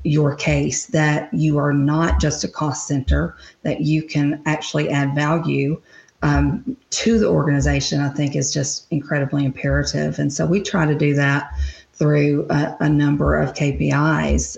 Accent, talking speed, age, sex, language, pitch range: American, 160 wpm, 40-59, female, English, 140-165 Hz